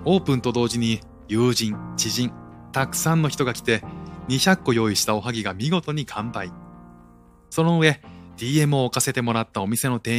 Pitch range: 105-130 Hz